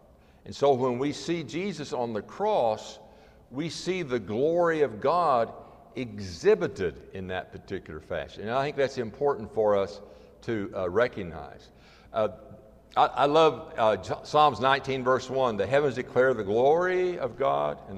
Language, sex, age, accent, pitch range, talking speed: English, male, 60-79, American, 105-165 Hz, 155 wpm